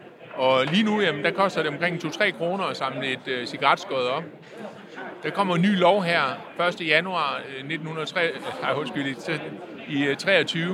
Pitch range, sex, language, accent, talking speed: 150-190 Hz, male, Danish, native, 140 wpm